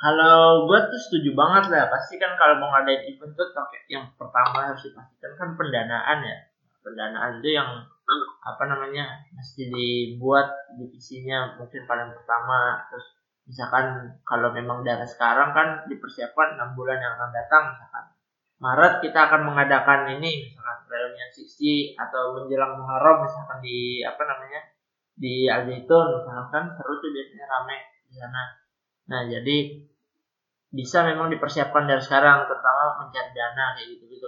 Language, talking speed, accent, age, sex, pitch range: Indonesian, 140 wpm, native, 20-39, male, 125-145 Hz